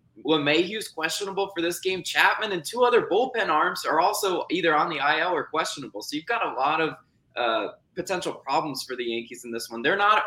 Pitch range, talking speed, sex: 140-200 Hz, 220 wpm, male